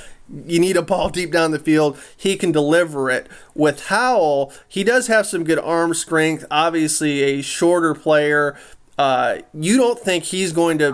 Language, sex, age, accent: English, male, 30-49, American